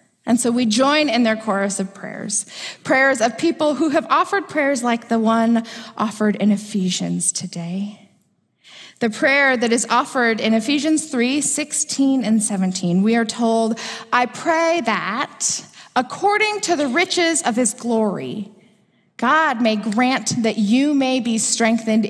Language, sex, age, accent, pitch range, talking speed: English, female, 20-39, American, 200-255 Hz, 150 wpm